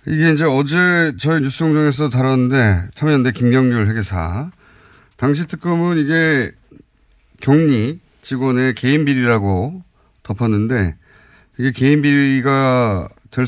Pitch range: 110-155 Hz